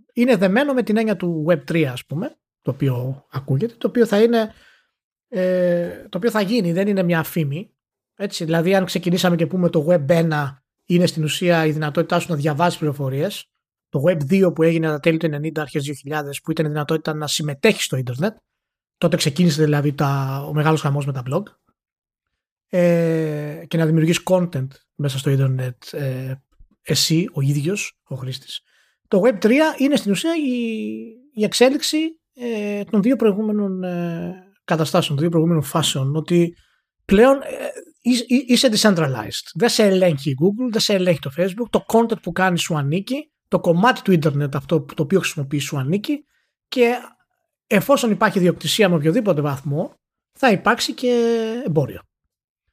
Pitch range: 155-220 Hz